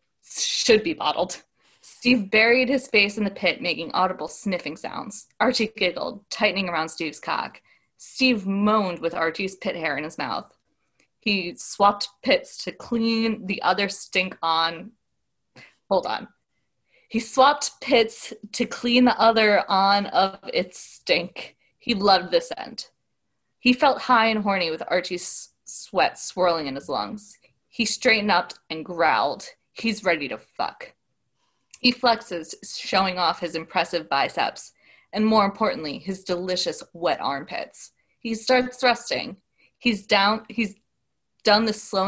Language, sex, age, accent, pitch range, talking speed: English, female, 20-39, American, 180-230 Hz, 140 wpm